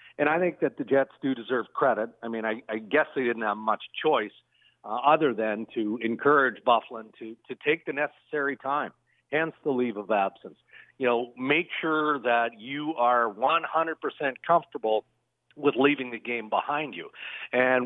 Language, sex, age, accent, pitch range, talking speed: English, male, 50-69, American, 120-150 Hz, 175 wpm